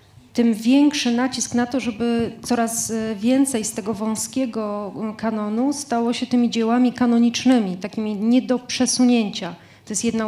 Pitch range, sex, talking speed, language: 220-250 Hz, female, 140 wpm, Polish